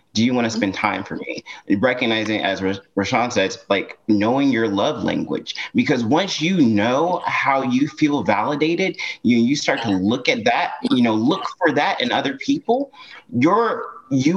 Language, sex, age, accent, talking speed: English, male, 30-49, American, 175 wpm